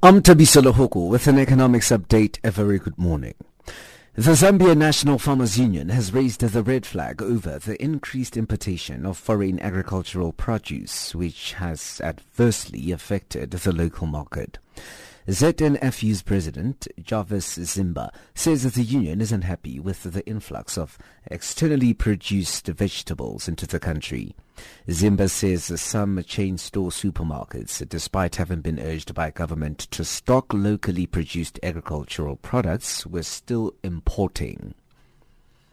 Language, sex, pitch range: English, male, 90-125 Hz